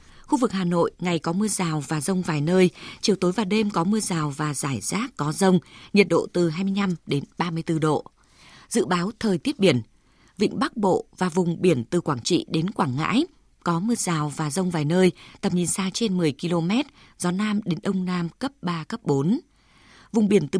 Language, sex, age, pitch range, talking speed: Vietnamese, female, 20-39, 165-205 Hz, 210 wpm